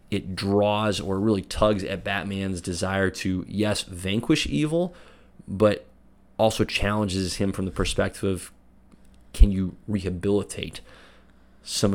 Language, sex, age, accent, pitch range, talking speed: English, male, 30-49, American, 95-110 Hz, 120 wpm